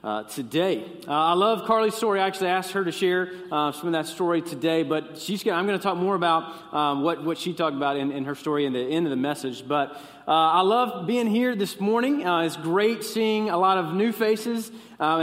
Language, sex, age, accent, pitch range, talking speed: English, male, 30-49, American, 165-220 Hz, 235 wpm